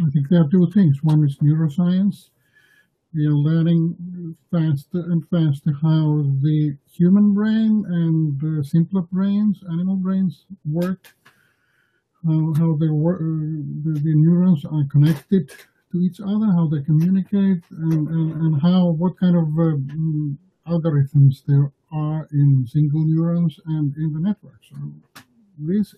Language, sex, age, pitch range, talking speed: English, male, 50-69, 150-180 Hz, 140 wpm